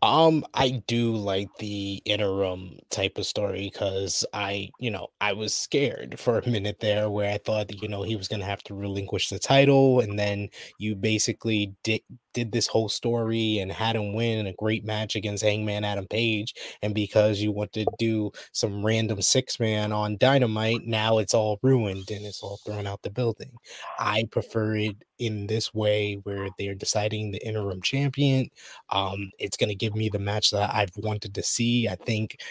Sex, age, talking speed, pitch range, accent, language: male, 20-39, 190 wpm, 100-110 Hz, American, English